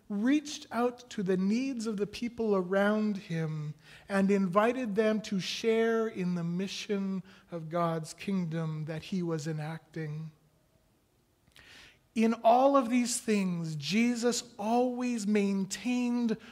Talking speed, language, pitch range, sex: 120 wpm, English, 170-230 Hz, male